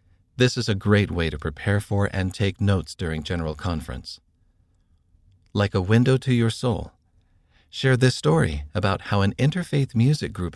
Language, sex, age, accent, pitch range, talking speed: English, male, 40-59, American, 85-115 Hz, 165 wpm